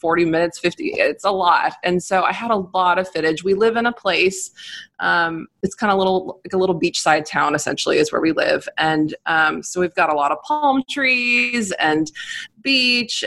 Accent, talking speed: American, 215 wpm